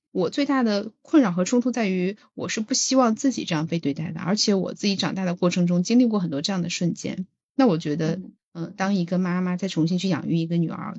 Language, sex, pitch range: Chinese, female, 165-200 Hz